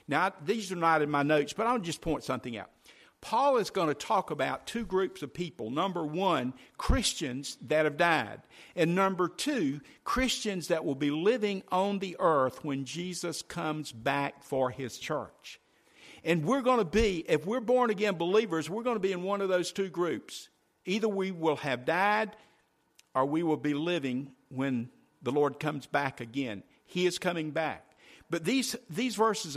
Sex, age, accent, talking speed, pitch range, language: male, 50-69, American, 185 wpm, 145-200 Hz, English